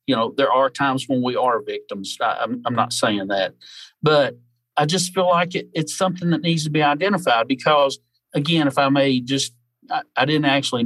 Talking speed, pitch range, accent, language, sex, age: 200 wpm, 125-150 Hz, American, English, male, 40-59